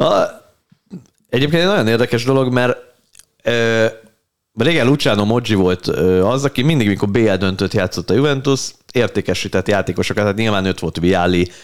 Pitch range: 90-110 Hz